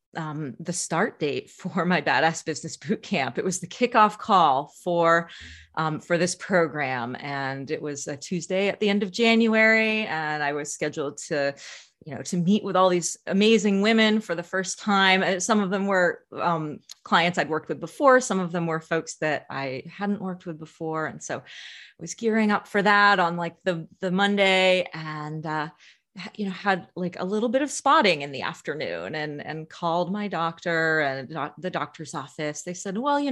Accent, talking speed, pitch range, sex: American, 195 wpm, 165-220 Hz, female